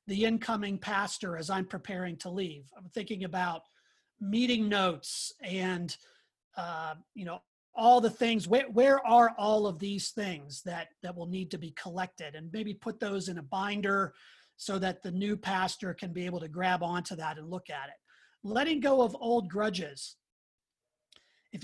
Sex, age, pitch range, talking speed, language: male, 30-49, 185-220 Hz, 175 wpm, English